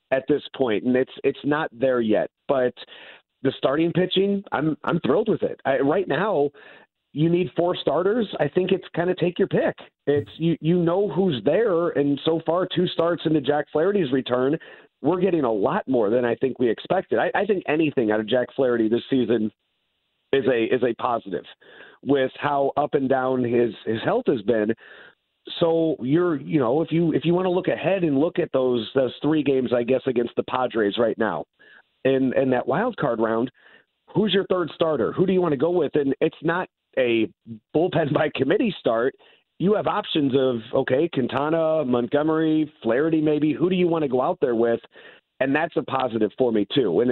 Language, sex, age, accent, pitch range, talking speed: English, male, 40-59, American, 125-170 Hz, 205 wpm